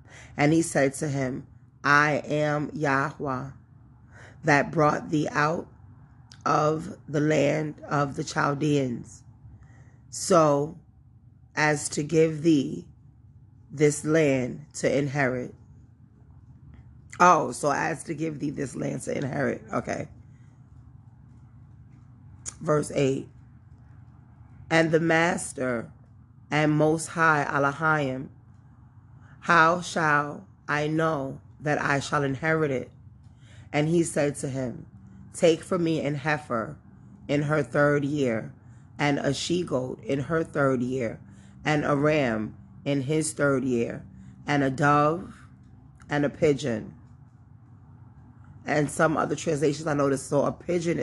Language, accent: English, American